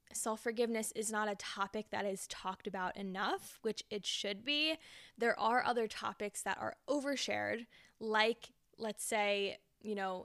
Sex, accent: female, American